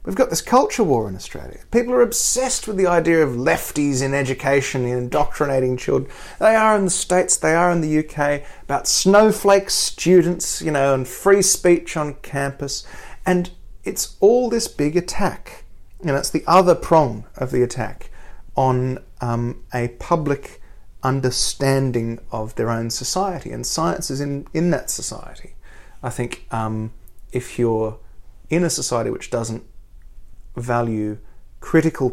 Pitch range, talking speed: 115-165 Hz, 155 wpm